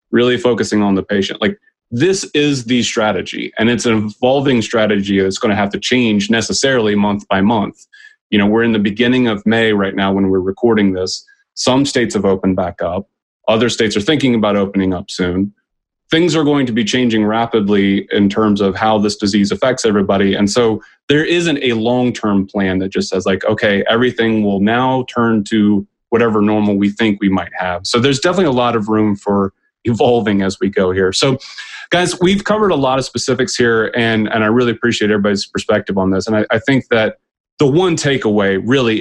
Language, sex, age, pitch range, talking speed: English, male, 30-49, 100-120 Hz, 205 wpm